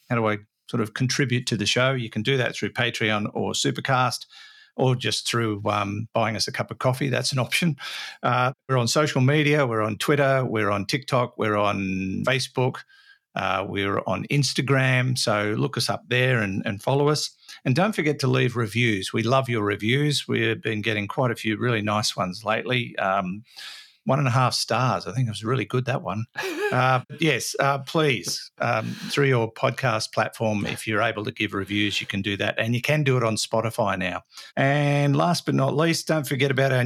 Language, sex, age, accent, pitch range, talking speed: English, male, 50-69, Australian, 110-140 Hz, 210 wpm